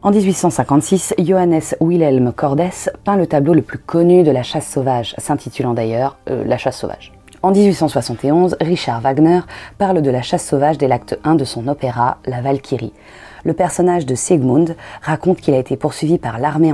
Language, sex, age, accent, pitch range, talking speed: French, female, 20-39, French, 125-160 Hz, 175 wpm